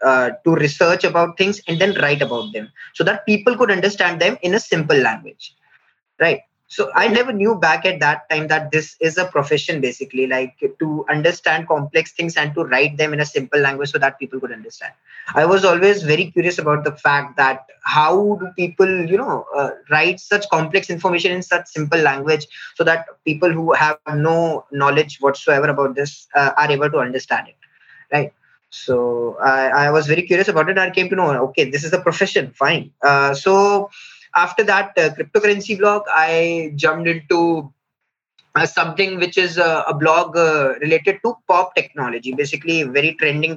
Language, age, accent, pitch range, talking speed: English, 20-39, Indian, 145-180 Hz, 185 wpm